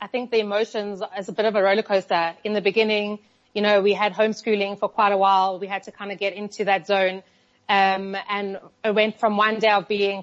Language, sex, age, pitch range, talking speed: English, female, 20-39, 200-230 Hz, 240 wpm